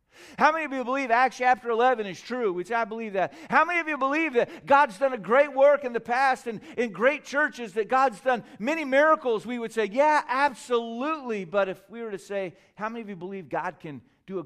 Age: 50-69